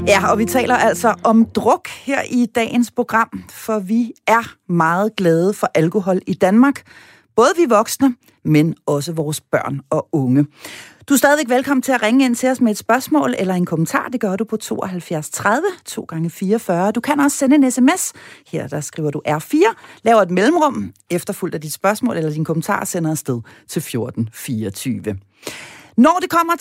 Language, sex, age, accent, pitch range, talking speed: Danish, female, 40-59, native, 170-245 Hz, 180 wpm